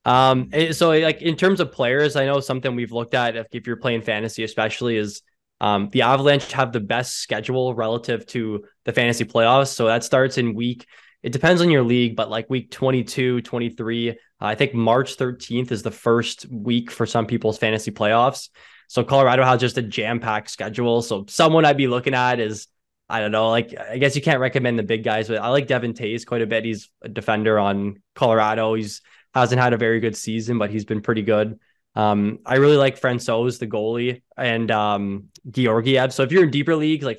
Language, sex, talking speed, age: English, male, 210 wpm, 10-29